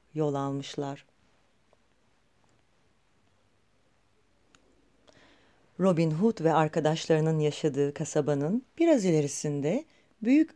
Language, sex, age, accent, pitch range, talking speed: Turkish, female, 40-59, native, 155-230 Hz, 65 wpm